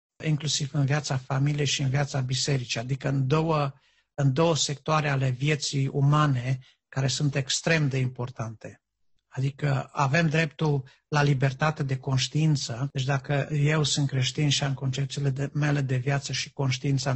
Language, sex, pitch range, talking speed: Romanian, male, 130-145 Hz, 145 wpm